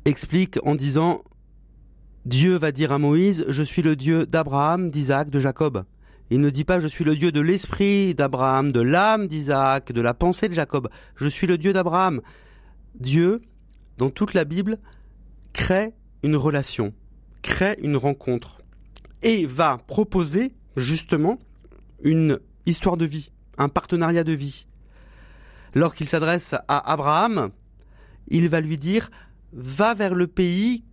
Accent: French